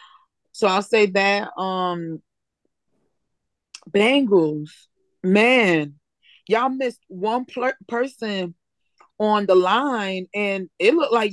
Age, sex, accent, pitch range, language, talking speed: 20-39, female, American, 175-240 Hz, English, 100 wpm